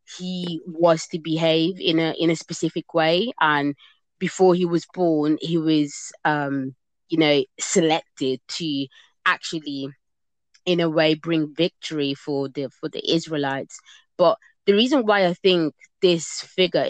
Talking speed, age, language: 145 wpm, 20-39, English